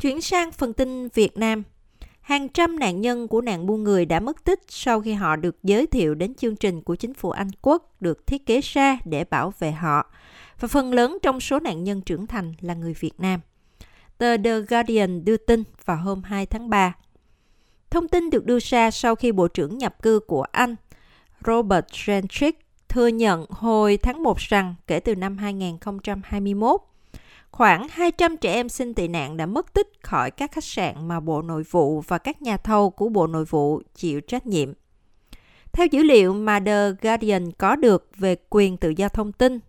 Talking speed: 195 wpm